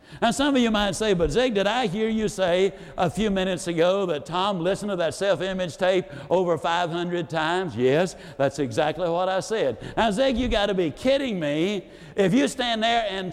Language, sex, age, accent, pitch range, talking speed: English, male, 60-79, American, 170-225 Hz, 205 wpm